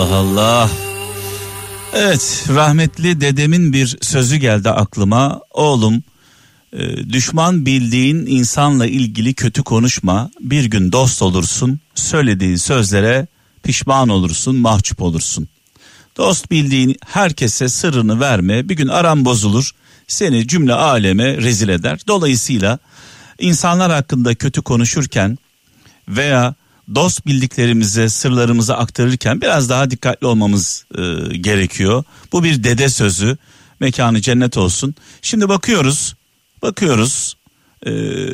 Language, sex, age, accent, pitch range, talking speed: Turkish, male, 50-69, native, 110-140 Hz, 105 wpm